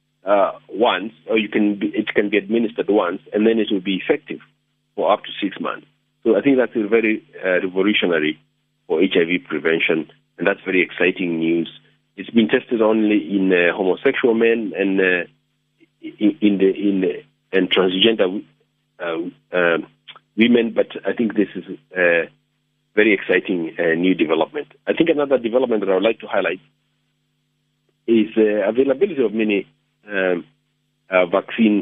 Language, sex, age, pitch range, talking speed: English, male, 50-69, 95-115 Hz, 165 wpm